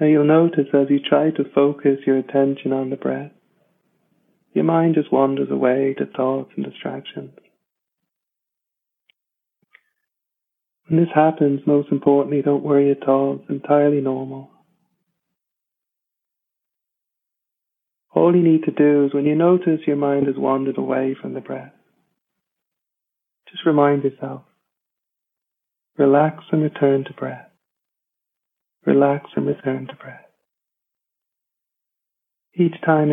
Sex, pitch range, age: male, 140-165 Hz, 40-59